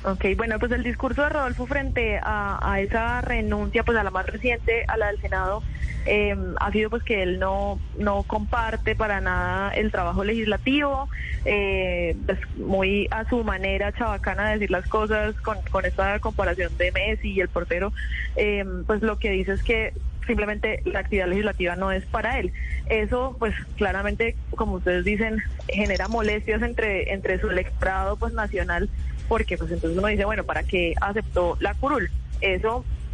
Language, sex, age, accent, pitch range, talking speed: Spanish, female, 20-39, Colombian, 185-235 Hz, 175 wpm